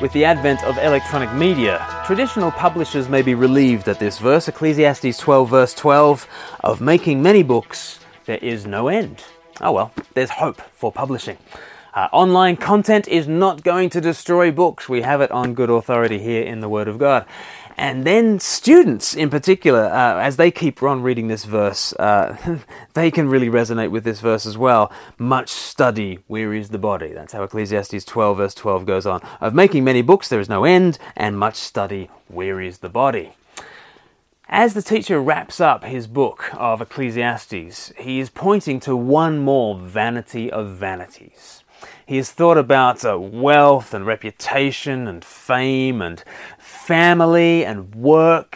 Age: 20-39